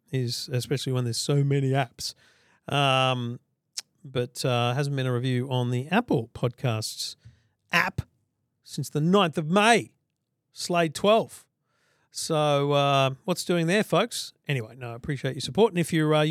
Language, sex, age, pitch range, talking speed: English, male, 40-59, 130-170 Hz, 155 wpm